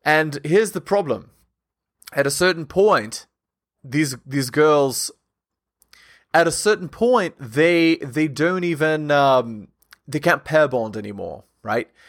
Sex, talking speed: male, 130 wpm